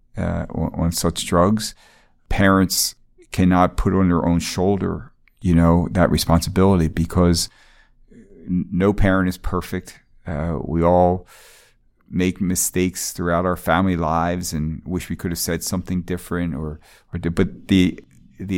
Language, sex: English, male